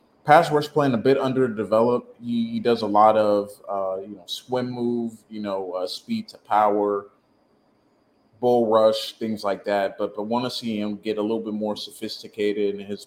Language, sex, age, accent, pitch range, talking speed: English, male, 20-39, American, 100-115 Hz, 190 wpm